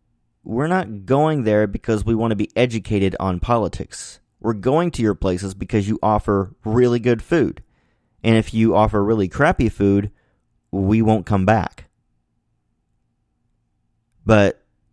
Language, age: English, 30-49